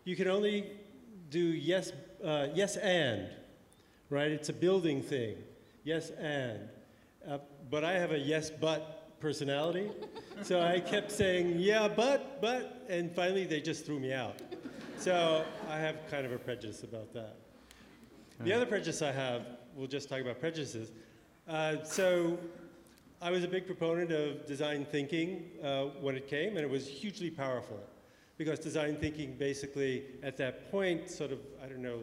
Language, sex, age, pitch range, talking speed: English, male, 40-59, 135-180 Hz, 165 wpm